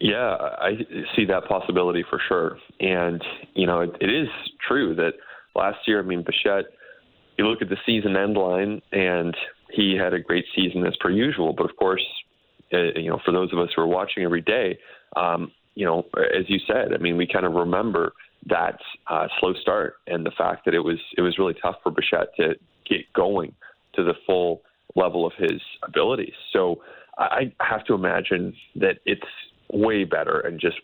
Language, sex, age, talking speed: English, male, 20-39, 195 wpm